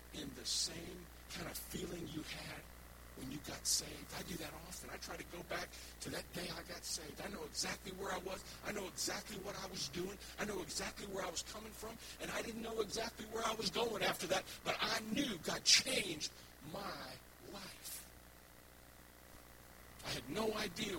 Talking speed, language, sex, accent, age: 200 wpm, English, male, American, 50-69